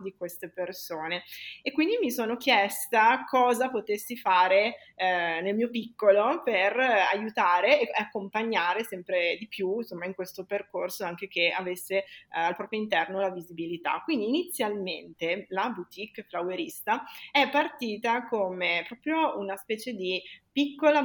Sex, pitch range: female, 185-230 Hz